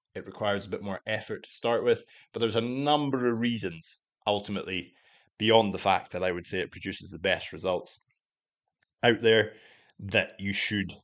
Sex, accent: male, British